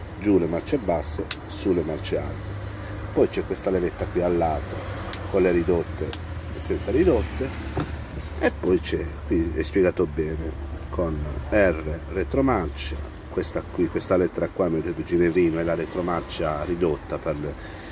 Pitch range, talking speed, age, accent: 75-100 Hz, 145 wpm, 40-59, native